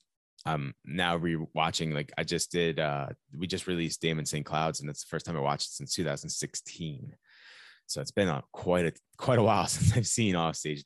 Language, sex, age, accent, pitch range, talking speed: English, male, 20-39, American, 75-95 Hz, 205 wpm